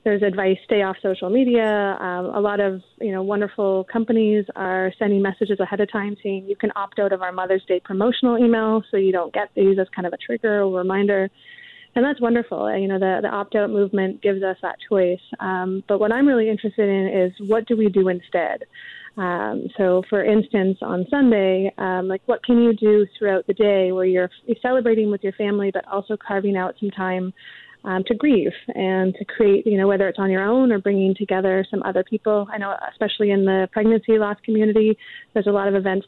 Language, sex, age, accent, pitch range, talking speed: English, female, 20-39, American, 190-215 Hz, 215 wpm